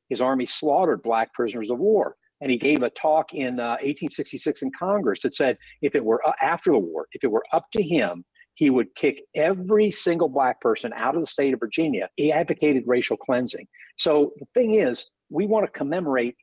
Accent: American